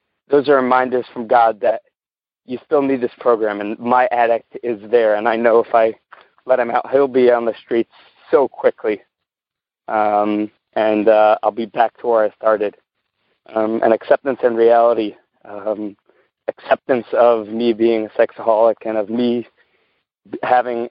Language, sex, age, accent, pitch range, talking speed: English, male, 30-49, American, 110-130 Hz, 165 wpm